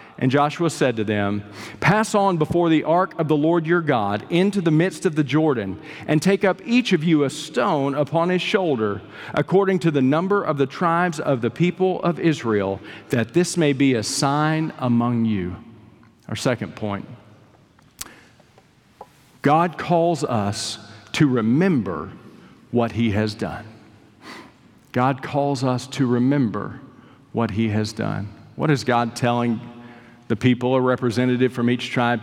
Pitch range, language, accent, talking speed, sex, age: 115-160 Hz, English, American, 155 wpm, male, 50-69